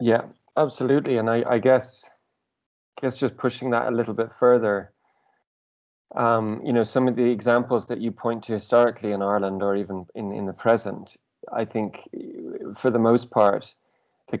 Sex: male